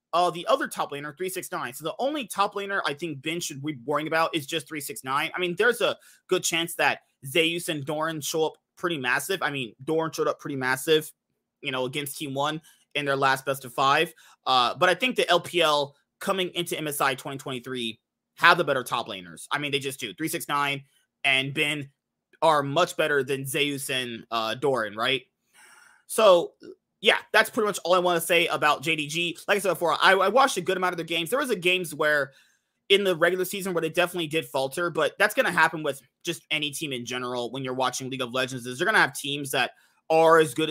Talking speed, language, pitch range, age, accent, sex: 220 wpm, English, 140-175 Hz, 30-49, American, male